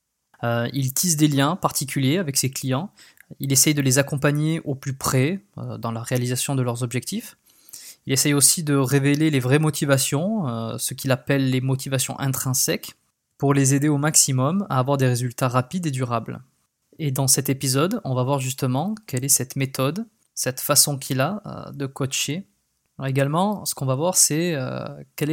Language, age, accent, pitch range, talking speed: French, 20-39, French, 130-150 Hz, 185 wpm